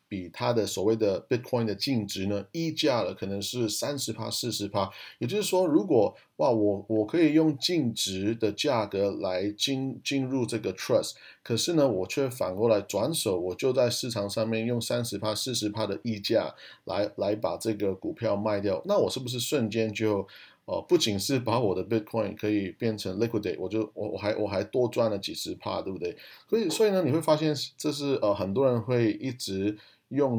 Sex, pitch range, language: male, 105-130 Hz, Chinese